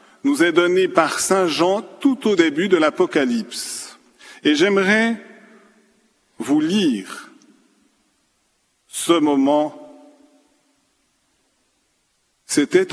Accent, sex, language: French, male, French